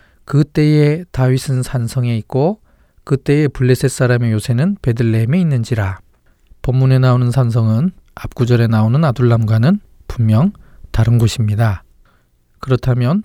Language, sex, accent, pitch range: Korean, male, native, 115-145 Hz